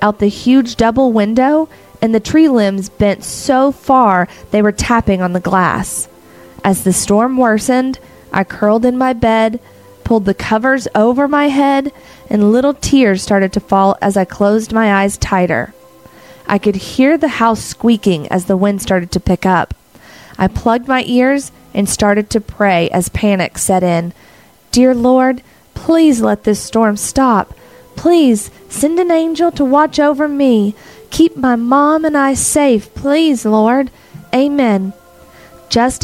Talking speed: 160 wpm